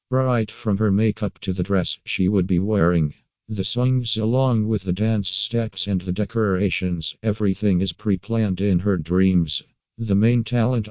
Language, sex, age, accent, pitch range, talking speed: English, male, 50-69, American, 95-110 Hz, 165 wpm